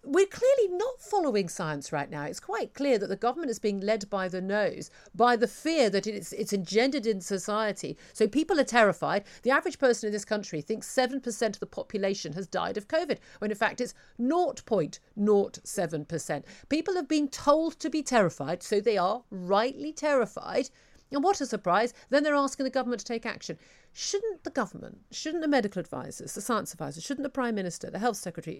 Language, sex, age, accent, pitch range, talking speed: English, female, 50-69, British, 210-270 Hz, 195 wpm